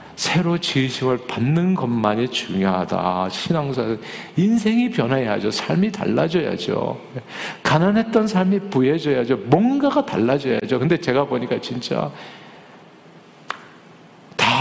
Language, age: Korean, 50-69